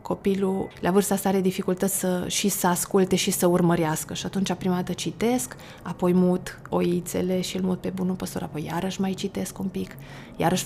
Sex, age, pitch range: female, 20-39, 175-190 Hz